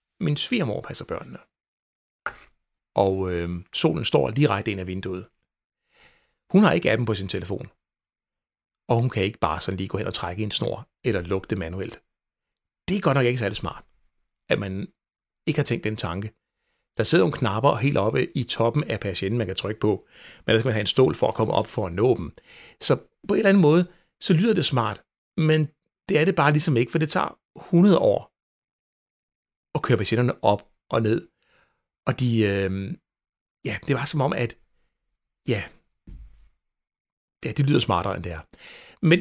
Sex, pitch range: male, 100-150 Hz